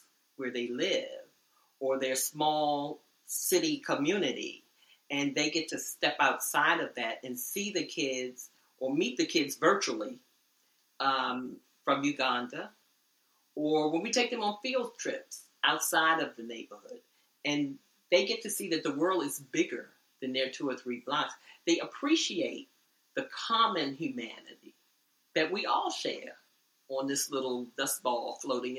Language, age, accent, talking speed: English, 40-59, American, 150 wpm